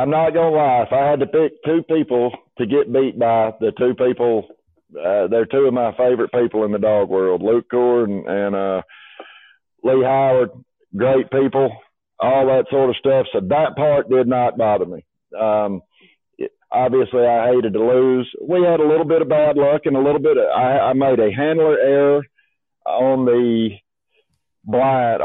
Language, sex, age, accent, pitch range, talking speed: English, male, 50-69, American, 115-145 Hz, 185 wpm